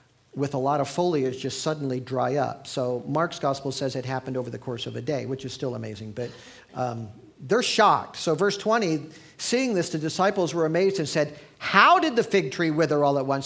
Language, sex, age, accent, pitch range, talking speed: English, male, 50-69, American, 130-170 Hz, 220 wpm